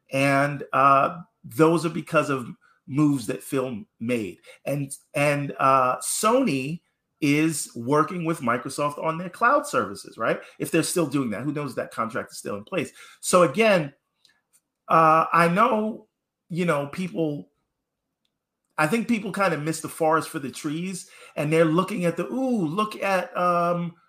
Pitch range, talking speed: 140-190 Hz, 160 wpm